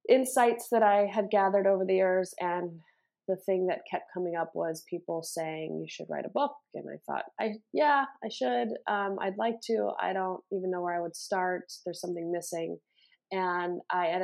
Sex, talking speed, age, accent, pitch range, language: female, 195 wpm, 20-39, American, 160-200 Hz, English